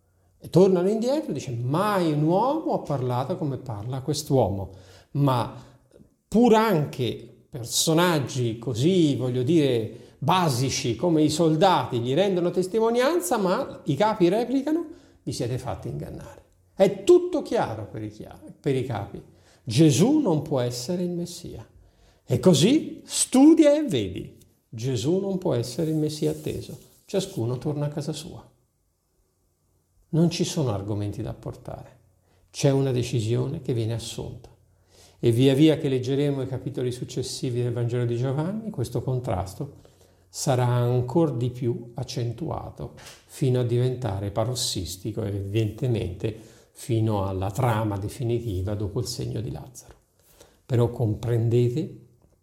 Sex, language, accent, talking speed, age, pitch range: male, Italian, native, 130 wpm, 50-69, 110-160 Hz